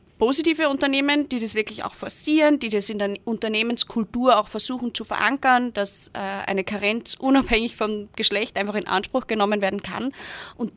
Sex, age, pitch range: female, 20-39, 195-230 Hz